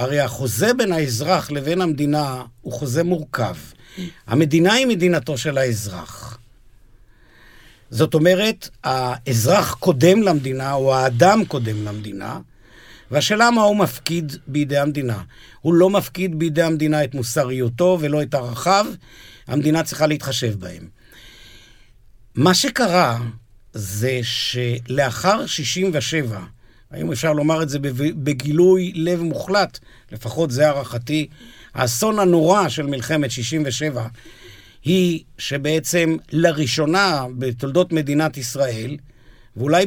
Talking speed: 105 wpm